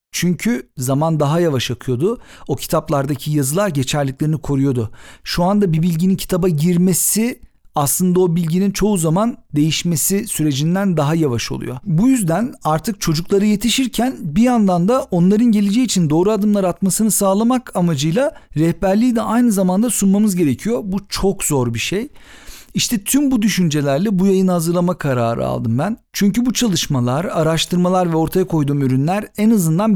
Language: Turkish